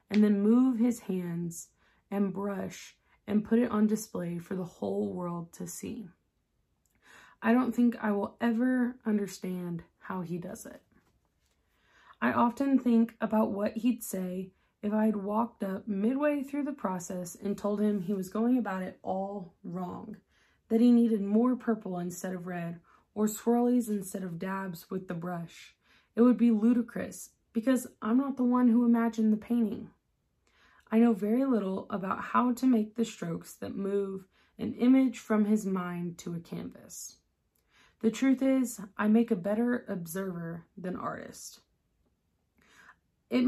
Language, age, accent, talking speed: English, 20-39, American, 160 wpm